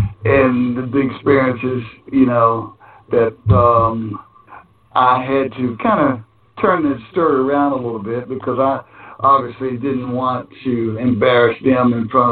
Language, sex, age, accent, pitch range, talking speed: English, male, 60-79, American, 115-130 Hz, 140 wpm